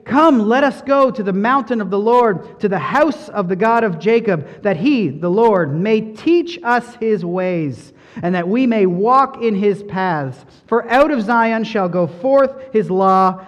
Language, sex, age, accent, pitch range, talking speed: English, male, 40-59, American, 180-245 Hz, 195 wpm